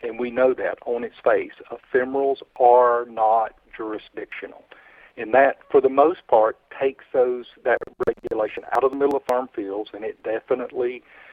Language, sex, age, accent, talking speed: English, male, 50-69, American, 165 wpm